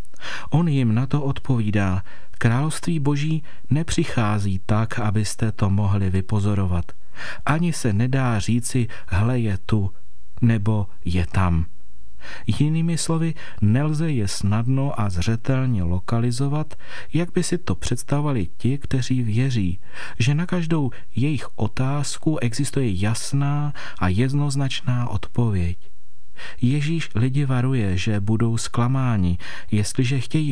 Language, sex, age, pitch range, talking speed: Czech, male, 40-59, 105-140 Hz, 110 wpm